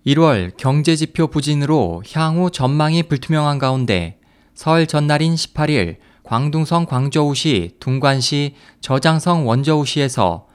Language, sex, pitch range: Korean, male, 130-165 Hz